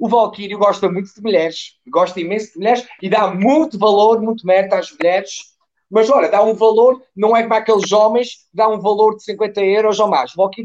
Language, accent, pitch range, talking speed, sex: Portuguese, Portuguese, 185-230 Hz, 215 wpm, male